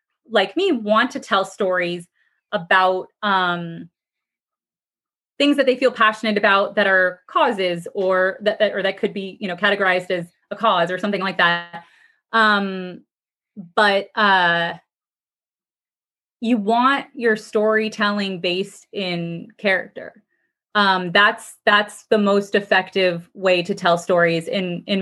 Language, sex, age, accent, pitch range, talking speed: English, female, 20-39, American, 180-225 Hz, 135 wpm